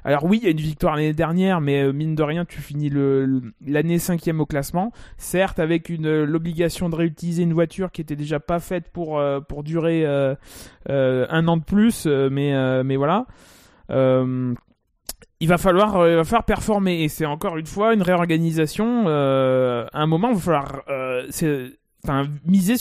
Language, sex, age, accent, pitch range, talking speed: French, male, 20-39, French, 155-195 Hz, 190 wpm